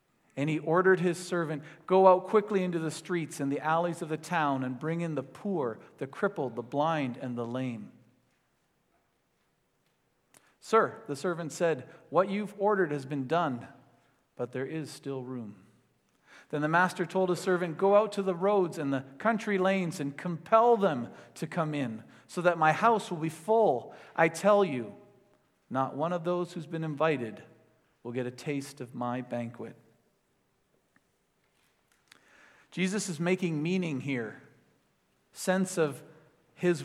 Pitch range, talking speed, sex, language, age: 145-195 Hz, 160 wpm, male, English, 40-59